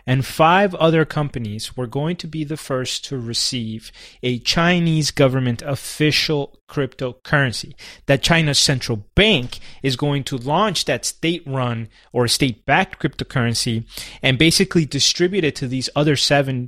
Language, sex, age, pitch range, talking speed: English, male, 30-49, 125-160 Hz, 135 wpm